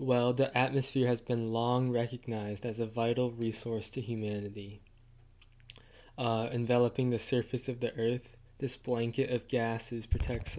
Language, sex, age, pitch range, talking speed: English, male, 20-39, 115-125 Hz, 140 wpm